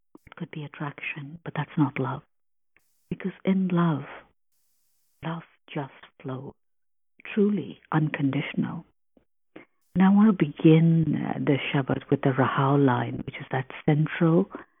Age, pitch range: 50-69, 145-185 Hz